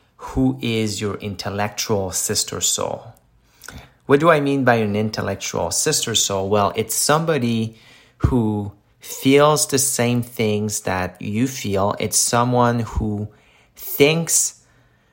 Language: English